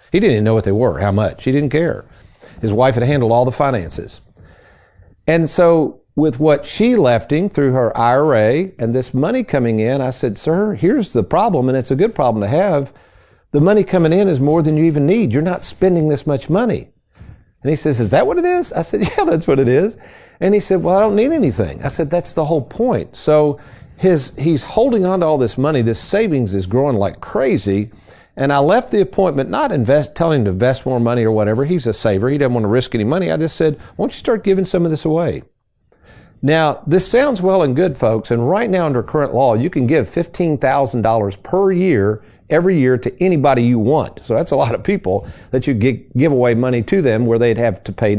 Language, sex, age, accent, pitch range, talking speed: English, male, 50-69, American, 115-170 Hz, 230 wpm